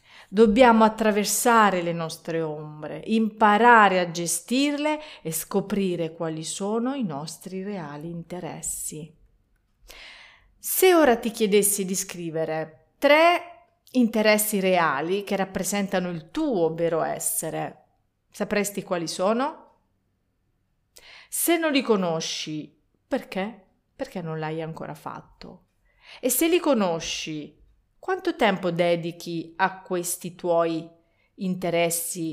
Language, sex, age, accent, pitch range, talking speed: Italian, female, 40-59, native, 170-230 Hz, 100 wpm